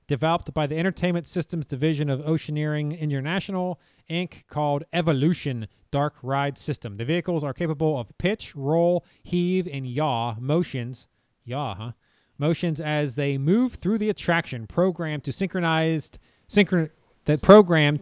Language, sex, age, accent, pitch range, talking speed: English, male, 30-49, American, 130-165 Hz, 135 wpm